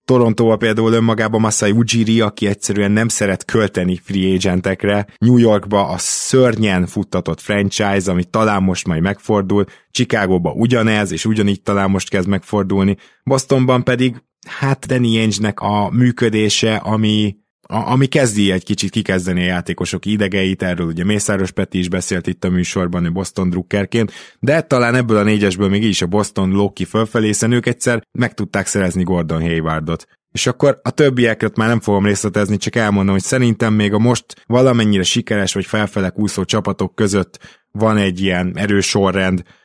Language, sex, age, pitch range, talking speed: Hungarian, male, 20-39, 95-110 Hz, 160 wpm